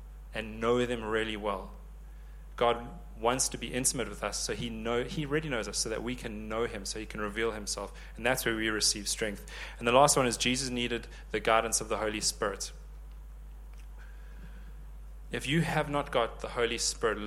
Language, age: English, 30-49